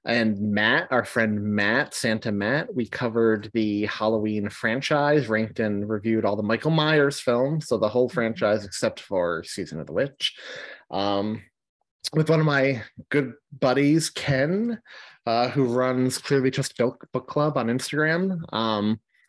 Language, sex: English, male